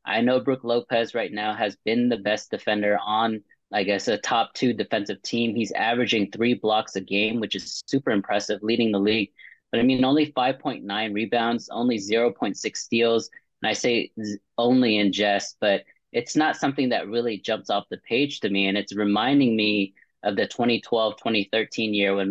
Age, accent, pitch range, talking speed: 30-49, American, 105-120 Hz, 185 wpm